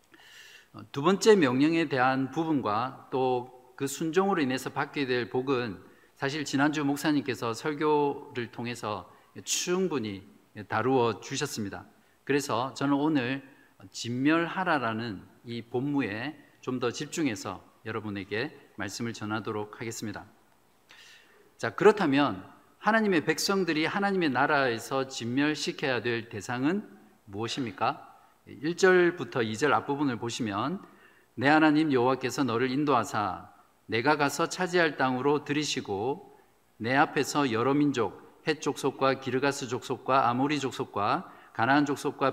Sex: male